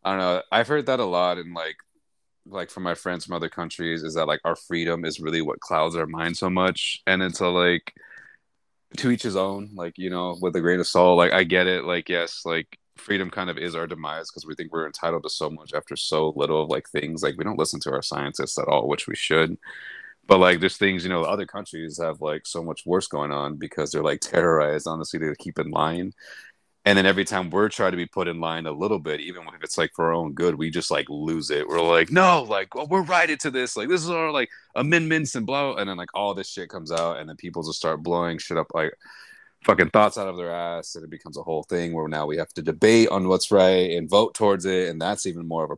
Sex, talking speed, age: male, 265 wpm, 30-49